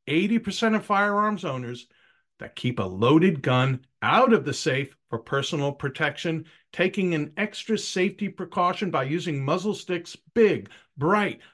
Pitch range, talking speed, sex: 140-205 Hz, 140 wpm, male